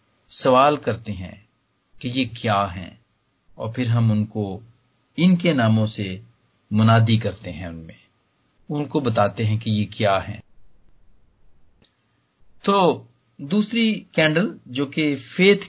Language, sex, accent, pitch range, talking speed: English, male, Indian, 100-140 Hz, 120 wpm